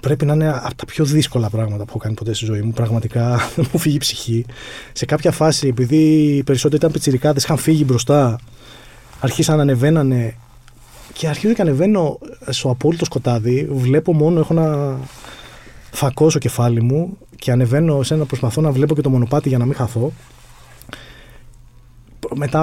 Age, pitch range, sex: 20-39, 120-155 Hz, male